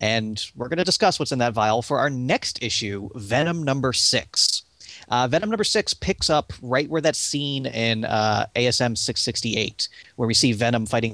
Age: 30-49